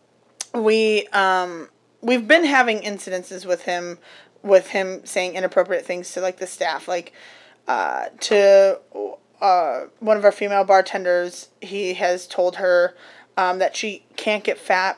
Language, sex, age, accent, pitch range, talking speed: English, female, 20-39, American, 185-230 Hz, 145 wpm